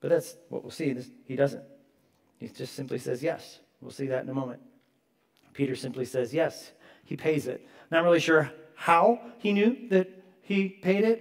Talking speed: 185 wpm